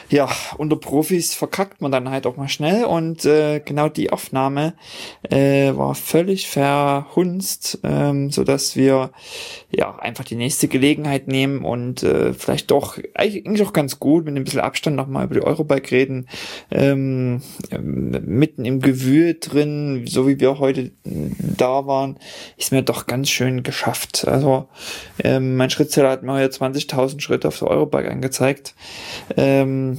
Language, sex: German, male